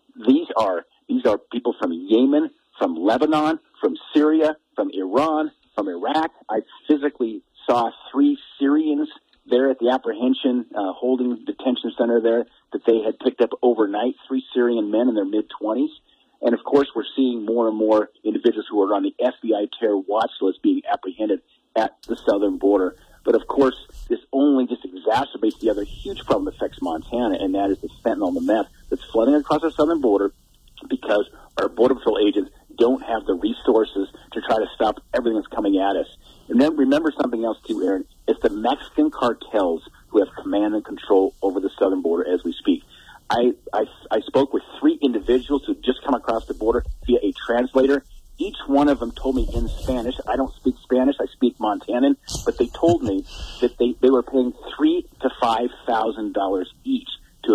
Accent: American